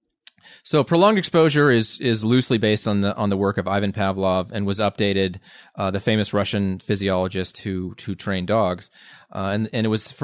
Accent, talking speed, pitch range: American, 195 wpm, 100-115 Hz